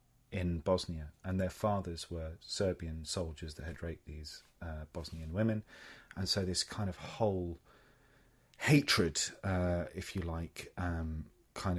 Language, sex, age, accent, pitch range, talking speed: English, male, 30-49, British, 90-110 Hz, 145 wpm